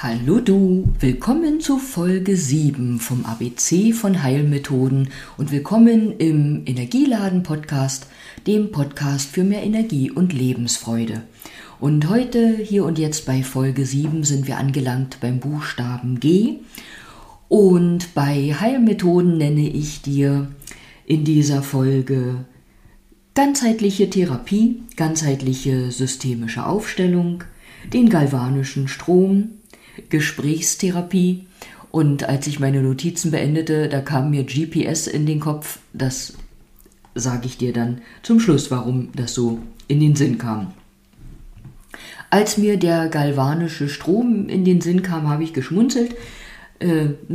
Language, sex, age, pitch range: German, female, 50-69, 135-185 Hz